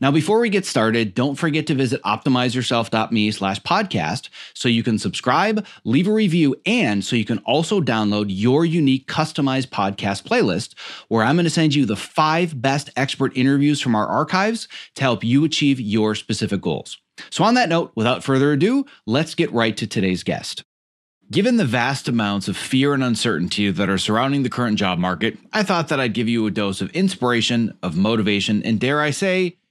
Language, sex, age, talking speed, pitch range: English, male, 30-49, 190 wpm, 110-155 Hz